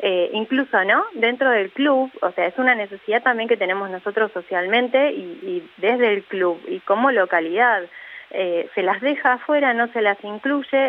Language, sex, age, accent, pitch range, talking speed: Spanish, female, 20-39, Argentinian, 185-260 Hz, 180 wpm